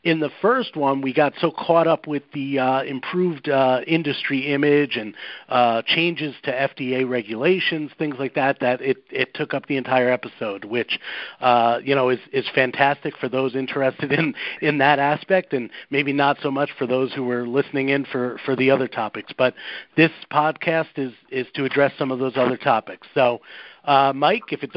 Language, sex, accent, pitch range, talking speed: English, male, American, 130-160 Hz, 195 wpm